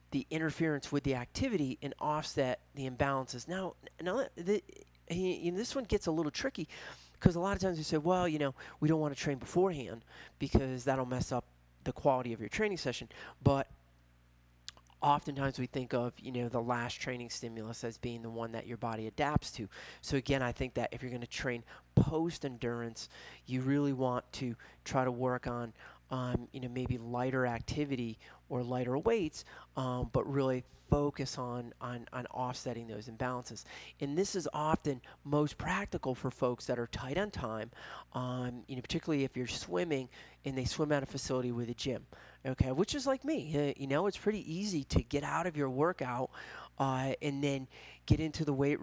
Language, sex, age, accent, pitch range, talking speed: English, male, 30-49, American, 120-145 Hz, 195 wpm